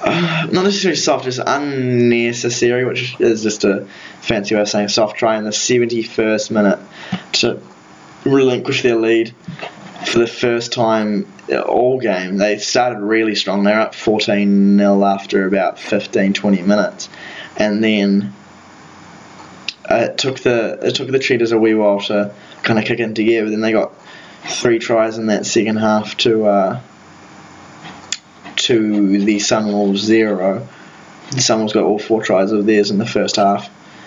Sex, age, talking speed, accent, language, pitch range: male, 20-39, 155 wpm, Australian, English, 105-120 Hz